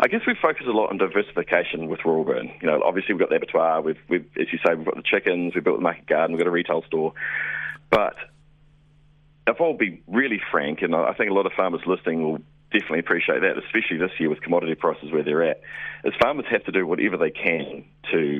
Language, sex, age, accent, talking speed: English, male, 30-49, Australian, 240 wpm